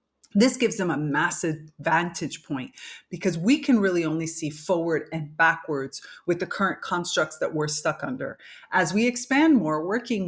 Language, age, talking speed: English, 30-49, 170 wpm